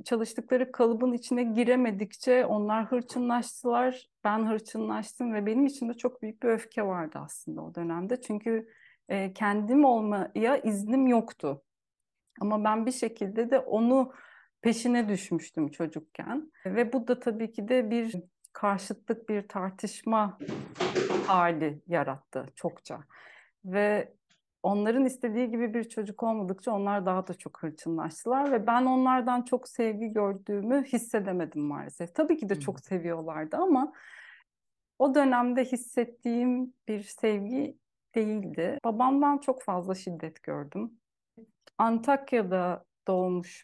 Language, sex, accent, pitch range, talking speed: Turkish, female, native, 195-245 Hz, 120 wpm